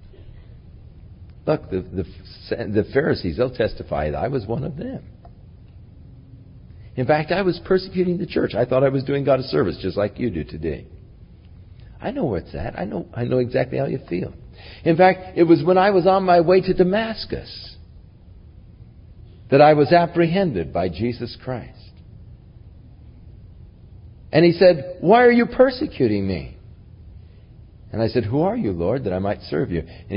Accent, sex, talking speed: American, male, 170 wpm